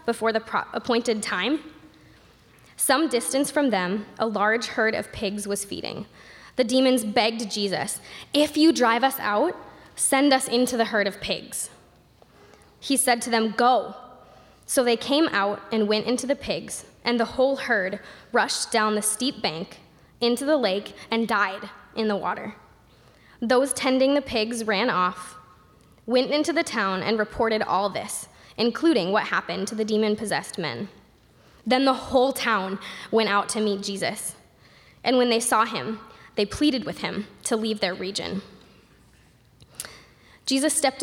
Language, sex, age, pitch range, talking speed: English, female, 10-29, 205-260 Hz, 155 wpm